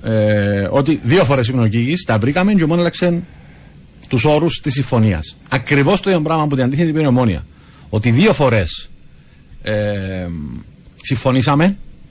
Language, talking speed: Greek, 155 wpm